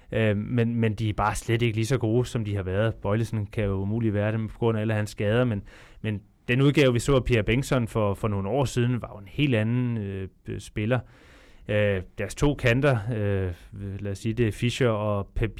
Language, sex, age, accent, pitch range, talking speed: Danish, male, 20-39, native, 110-130 Hz, 225 wpm